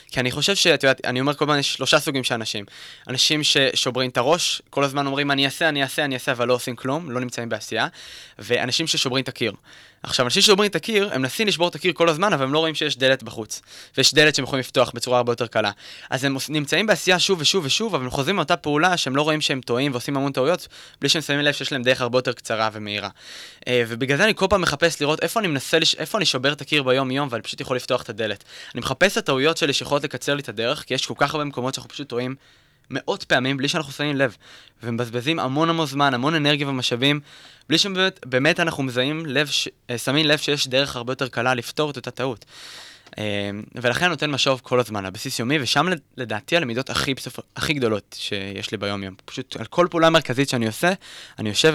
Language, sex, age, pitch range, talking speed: Hebrew, male, 20-39, 125-155 Hz, 210 wpm